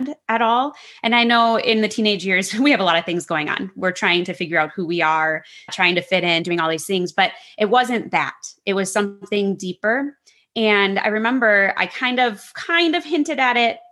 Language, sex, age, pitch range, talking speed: English, female, 20-39, 180-235 Hz, 225 wpm